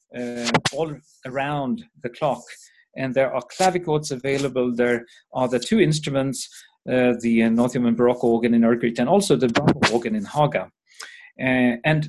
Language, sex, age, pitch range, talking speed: English, male, 40-59, 120-165 Hz, 165 wpm